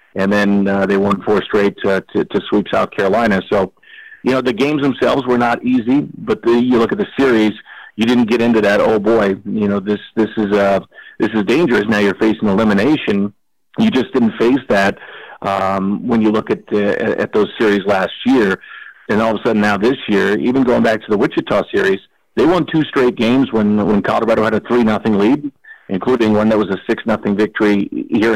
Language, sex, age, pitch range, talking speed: English, male, 50-69, 105-120 Hz, 215 wpm